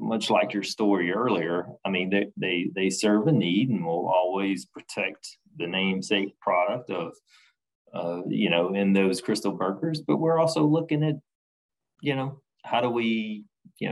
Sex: male